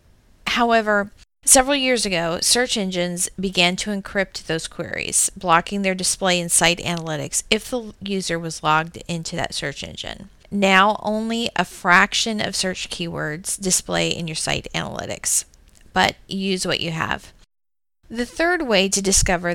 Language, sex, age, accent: English, female, 40-59, American